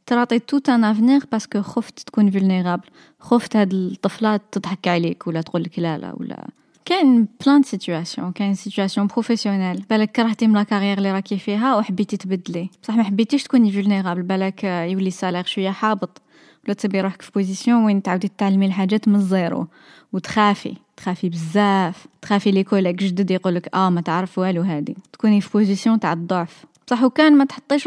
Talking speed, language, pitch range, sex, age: 170 wpm, Arabic, 190-235 Hz, female, 20-39